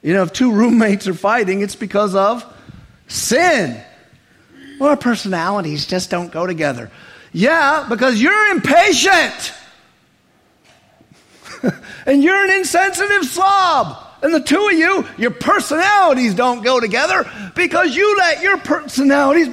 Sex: male